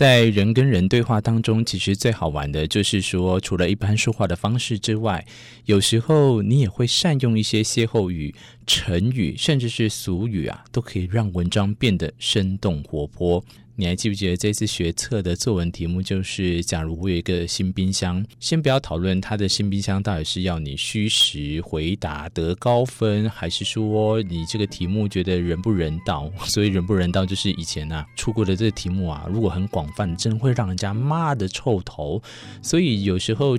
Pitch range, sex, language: 90-115 Hz, male, Chinese